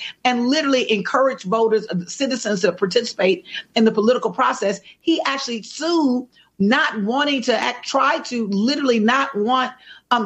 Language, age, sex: English, 40-59, female